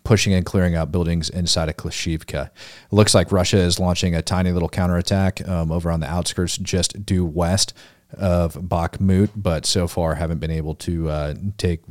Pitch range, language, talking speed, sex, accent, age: 85-95 Hz, English, 185 wpm, male, American, 30-49